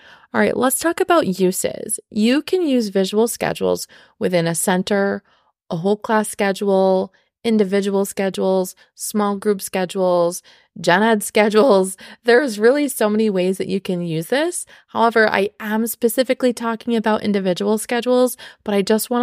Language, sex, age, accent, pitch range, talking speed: English, female, 20-39, American, 195-235 Hz, 150 wpm